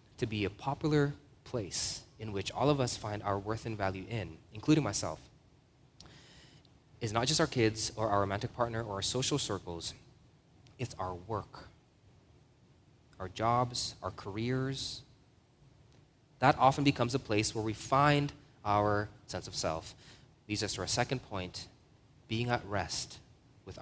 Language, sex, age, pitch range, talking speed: English, male, 20-39, 110-140 Hz, 150 wpm